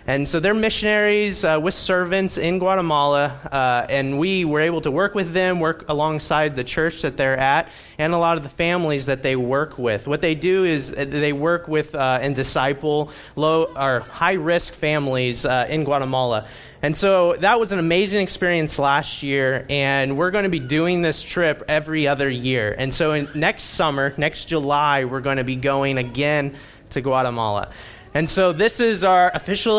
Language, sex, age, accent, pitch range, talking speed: English, male, 30-49, American, 135-170 Hz, 185 wpm